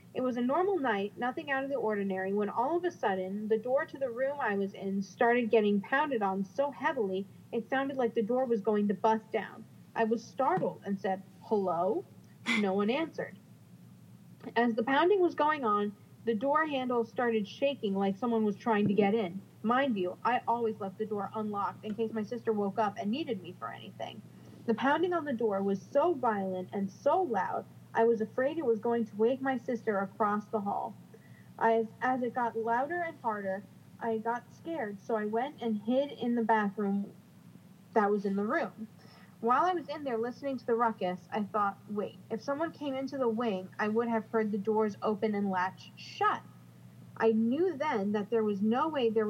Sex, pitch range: female, 205-250 Hz